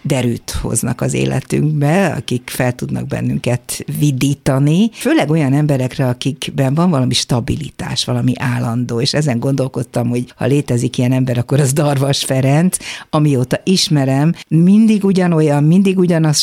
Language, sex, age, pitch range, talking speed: Hungarian, female, 50-69, 125-160 Hz, 130 wpm